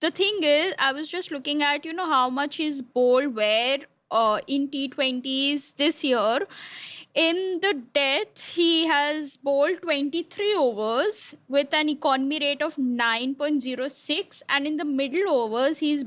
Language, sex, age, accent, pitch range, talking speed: English, female, 10-29, Indian, 265-305 Hz, 145 wpm